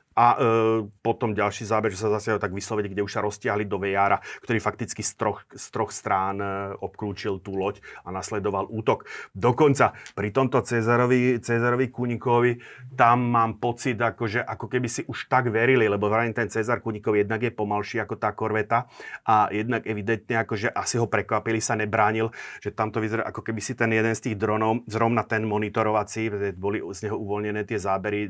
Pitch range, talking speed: 105-125 Hz, 180 wpm